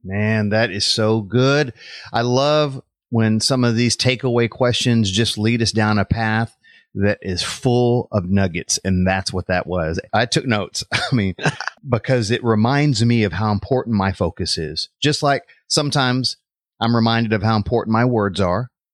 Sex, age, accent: male, 30-49, American